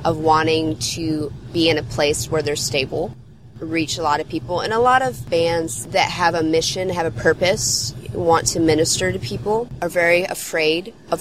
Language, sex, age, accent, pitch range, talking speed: English, female, 20-39, American, 145-165 Hz, 195 wpm